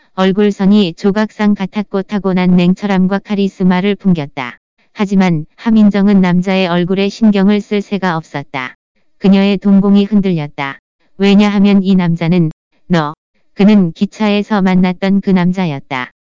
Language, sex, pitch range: Korean, female, 180-200 Hz